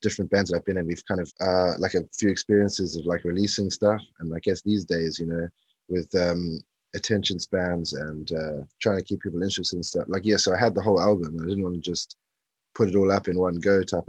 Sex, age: male, 20-39